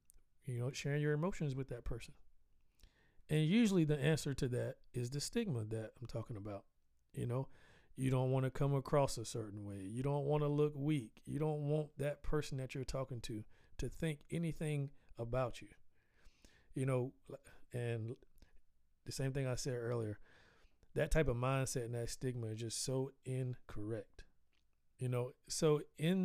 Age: 40-59